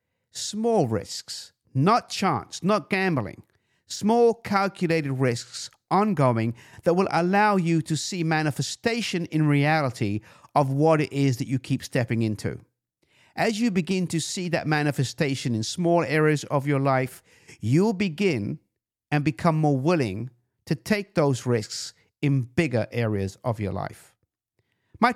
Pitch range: 115-160 Hz